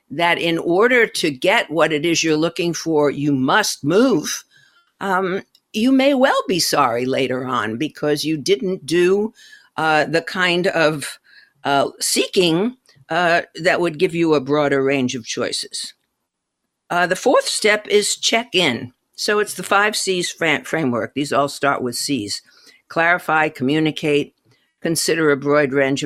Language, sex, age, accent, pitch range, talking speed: English, female, 60-79, American, 155-215 Hz, 150 wpm